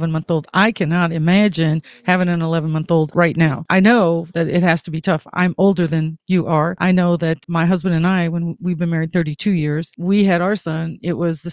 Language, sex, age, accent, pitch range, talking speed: English, female, 40-59, American, 170-195 Hz, 240 wpm